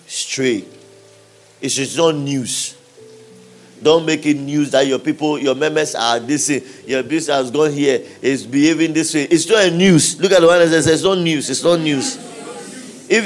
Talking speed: 190 wpm